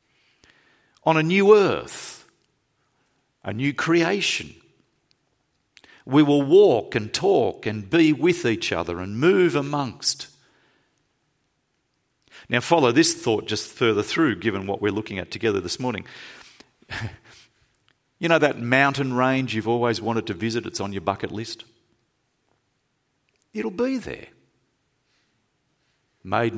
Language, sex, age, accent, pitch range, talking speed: English, male, 50-69, Australian, 110-150 Hz, 120 wpm